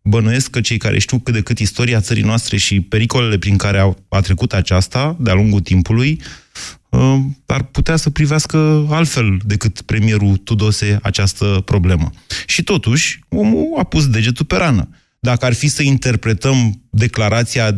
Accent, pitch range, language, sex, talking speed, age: native, 105-135 Hz, Romanian, male, 150 wpm, 20-39